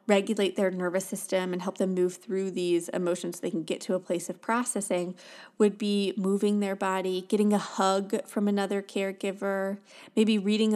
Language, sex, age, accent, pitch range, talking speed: English, female, 20-39, American, 190-235 Hz, 185 wpm